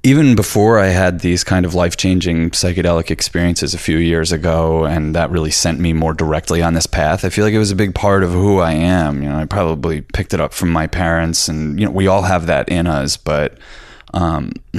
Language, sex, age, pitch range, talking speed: English, male, 20-39, 80-95 Hz, 230 wpm